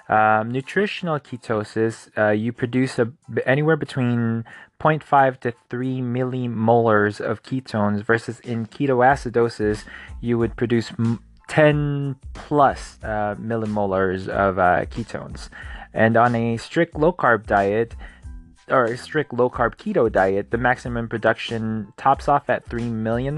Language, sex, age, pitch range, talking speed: English, male, 20-39, 105-135 Hz, 130 wpm